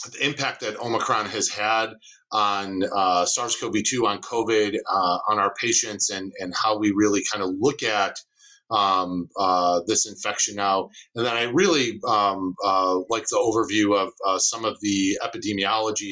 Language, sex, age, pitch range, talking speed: English, male, 40-59, 100-130 Hz, 165 wpm